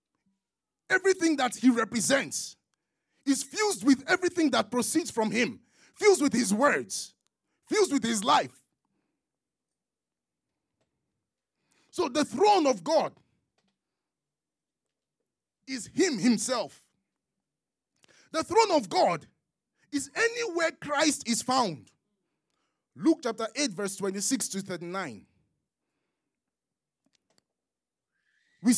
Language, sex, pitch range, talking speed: English, male, 190-275 Hz, 90 wpm